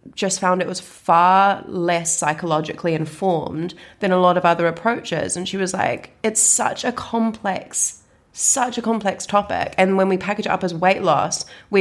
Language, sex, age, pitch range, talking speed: English, female, 20-39, 160-190 Hz, 180 wpm